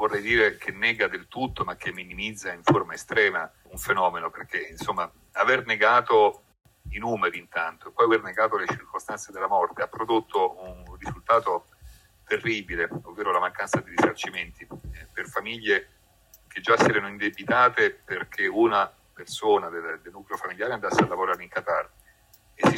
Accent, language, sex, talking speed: native, Italian, male, 160 wpm